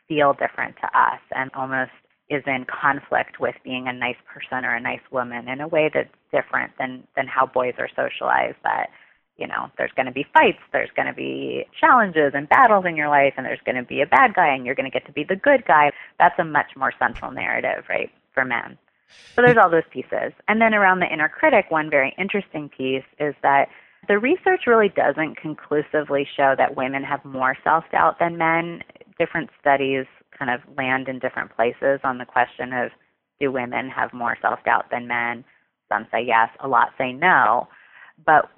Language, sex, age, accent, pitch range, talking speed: English, female, 30-49, American, 130-165 Hz, 200 wpm